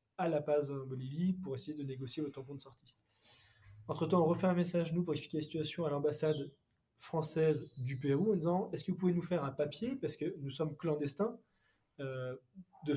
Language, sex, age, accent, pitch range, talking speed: French, male, 20-39, French, 140-170 Hz, 215 wpm